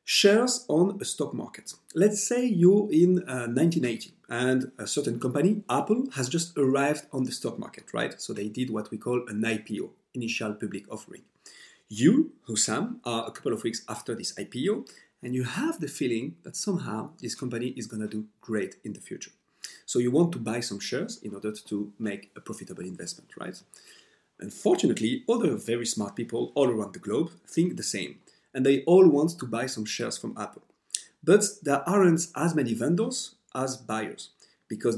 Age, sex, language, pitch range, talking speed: 40-59, male, English, 115-185 Hz, 185 wpm